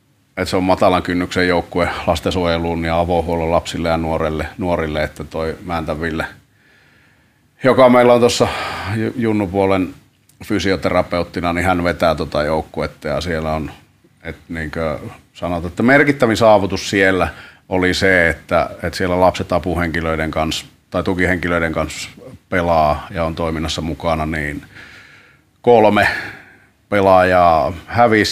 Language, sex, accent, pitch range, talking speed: Finnish, male, native, 80-95 Hz, 120 wpm